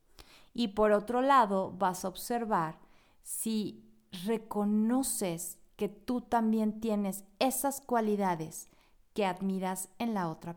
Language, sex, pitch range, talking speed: Spanish, female, 190-240 Hz, 115 wpm